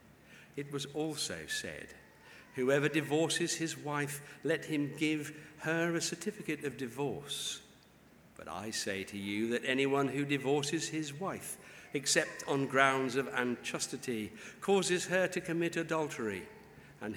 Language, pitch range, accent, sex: English, 120-145 Hz, British, male